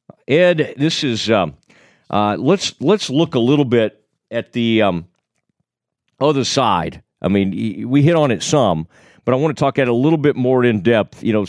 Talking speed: 200 wpm